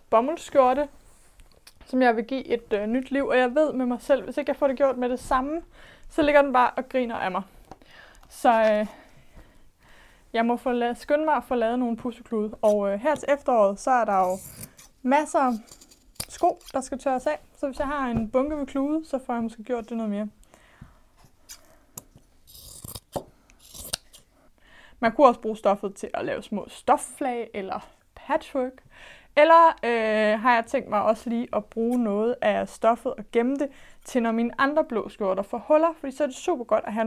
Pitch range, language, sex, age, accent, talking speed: 215-275 Hz, Danish, female, 20-39, native, 195 wpm